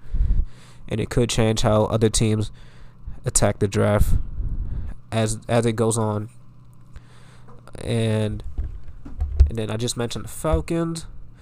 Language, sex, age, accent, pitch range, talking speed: English, male, 20-39, American, 100-115 Hz, 120 wpm